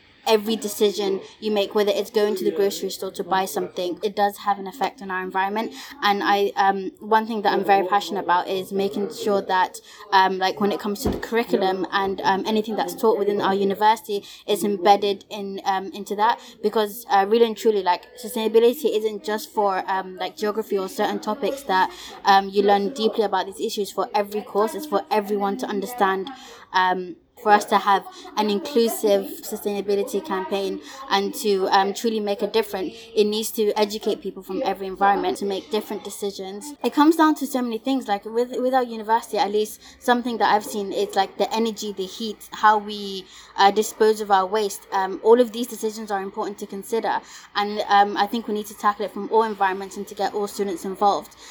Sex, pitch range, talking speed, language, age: female, 195-220 Hz, 205 wpm, English, 20-39